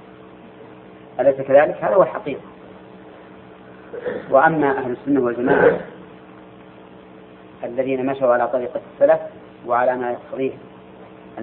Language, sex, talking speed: Arabic, female, 90 wpm